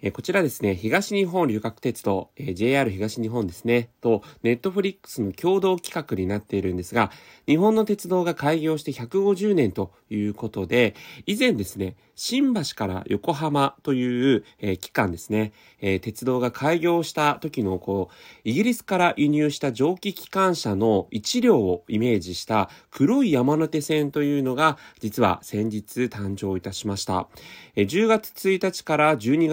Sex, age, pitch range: male, 30-49, 105-160 Hz